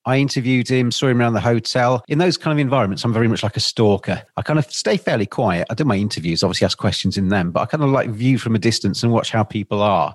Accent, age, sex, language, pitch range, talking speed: British, 40-59, male, English, 105-125 Hz, 285 wpm